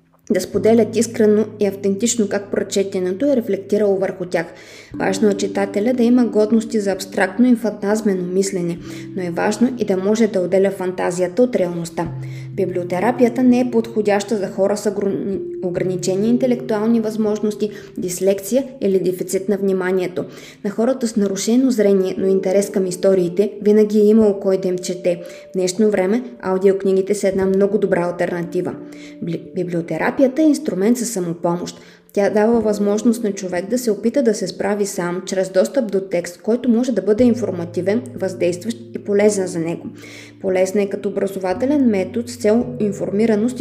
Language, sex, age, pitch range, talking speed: Bulgarian, female, 20-39, 185-220 Hz, 155 wpm